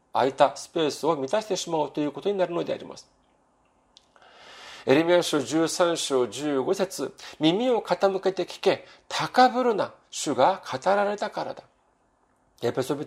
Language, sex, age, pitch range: Japanese, male, 40-59, 150-205 Hz